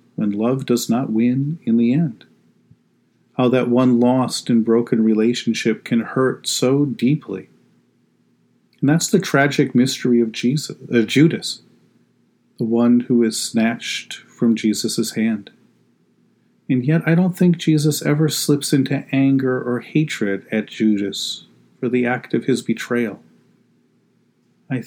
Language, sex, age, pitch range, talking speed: English, male, 40-59, 110-140 Hz, 140 wpm